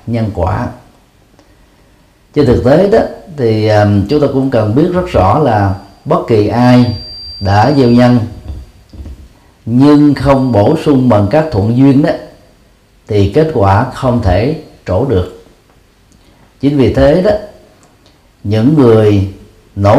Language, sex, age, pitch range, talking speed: Vietnamese, male, 40-59, 100-135 Hz, 130 wpm